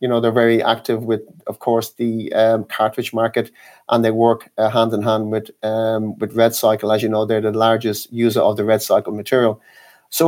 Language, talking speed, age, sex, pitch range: English, 210 wpm, 30-49, male, 115-130 Hz